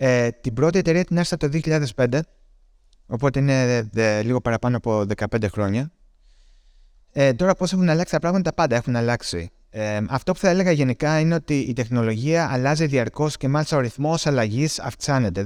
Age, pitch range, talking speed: 30-49, 110-150 Hz, 155 wpm